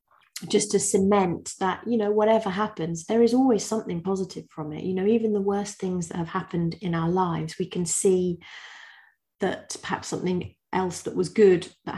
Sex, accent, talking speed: female, British, 190 wpm